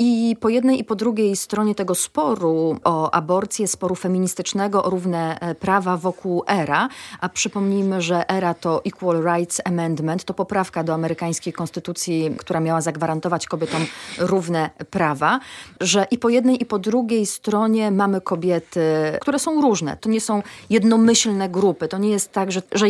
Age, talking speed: 30-49, 160 wpm